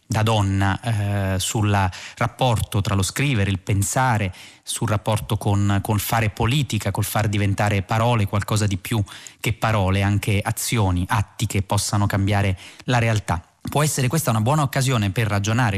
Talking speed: 155 wpm